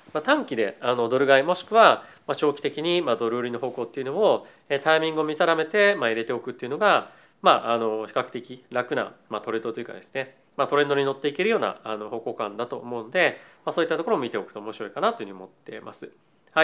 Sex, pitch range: male, 120-165 Hz